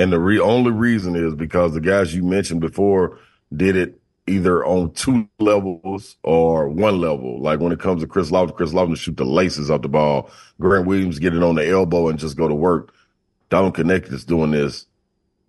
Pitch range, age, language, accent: 85-100 Hz, 40-59, English, American